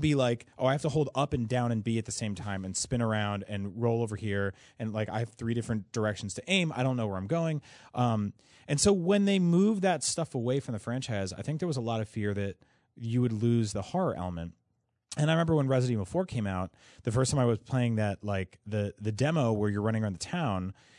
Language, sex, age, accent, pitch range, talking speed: English, male, 30-49, American, 100-140 Hz, 260 wpm